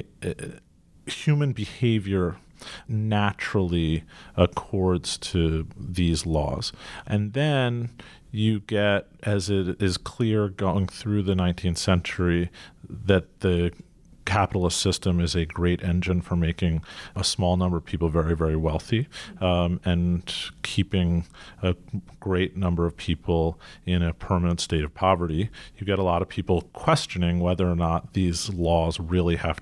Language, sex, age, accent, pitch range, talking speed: English, male, 40-59, American, 85-100 Hz, 135 wpm